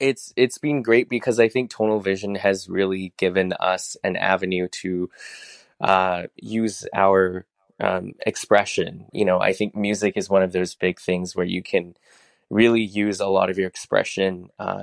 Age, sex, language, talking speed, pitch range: 20-39, male, English, 170 wpm, 90-105 Hz